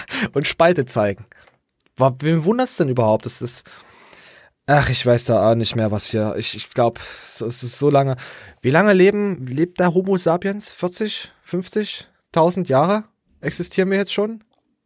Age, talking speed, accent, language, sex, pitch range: 20-39, 165 wpm, German, German, male, 125-180 Hz